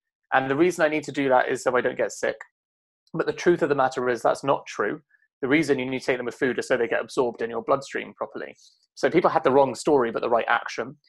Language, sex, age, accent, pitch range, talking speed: English, male, 20-39, British, 130-175 Hz, 280 wpm